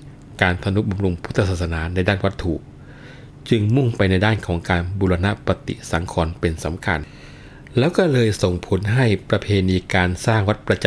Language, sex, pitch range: Thai, male, 85-110 Hz